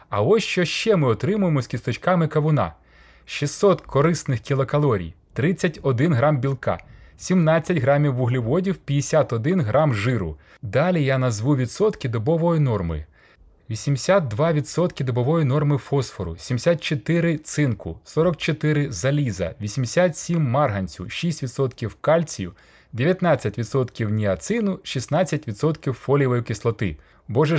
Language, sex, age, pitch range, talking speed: Ukrainian, male, 30-49, 115-170 Hz, 100 wpm